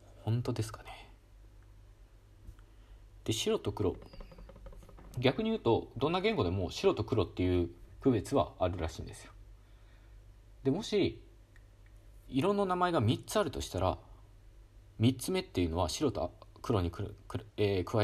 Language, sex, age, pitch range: Japanese, male, 40-59, 100-115 Hz